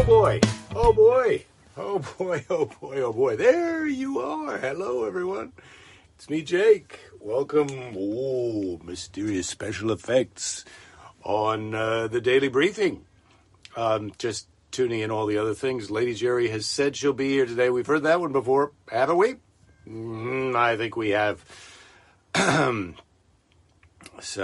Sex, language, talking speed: male, English, 140 wpm